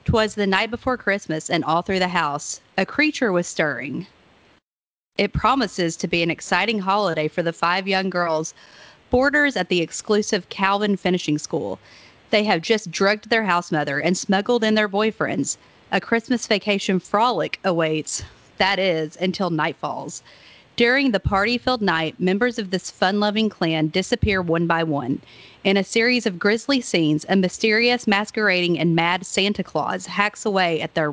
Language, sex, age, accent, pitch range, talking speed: English, female, 40-59, American, 165-210 Hz, 160 wpm